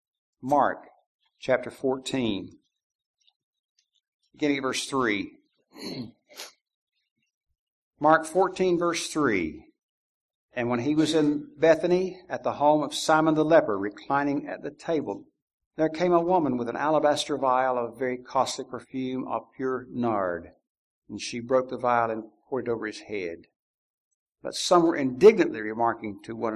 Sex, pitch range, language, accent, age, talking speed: male, 125-170 Hz, English, American, 60-79, 140 wpm